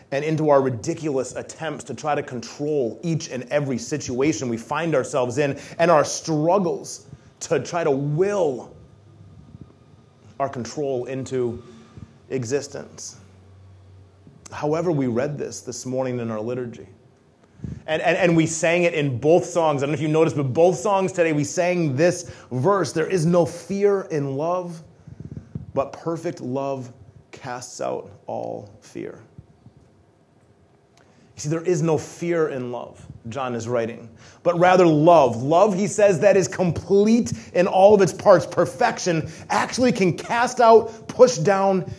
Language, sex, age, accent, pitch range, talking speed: English, male, 30-49, American, 125-170 Hz, 150 wpm